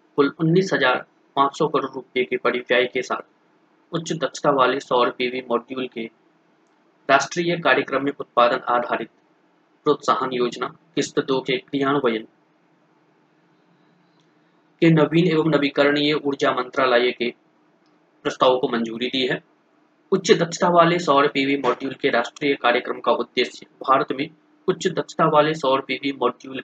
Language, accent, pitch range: Hindi, native, 125-155 Hz